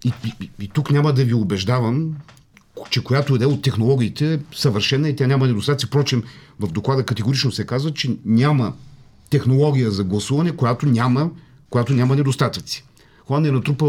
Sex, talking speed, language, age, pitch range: male, 175 wpm, Bulgarian, 50-69, 110-135 Hz